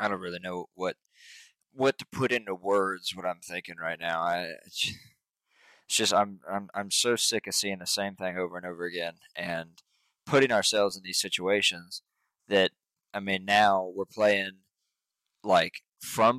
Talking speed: 170 wpm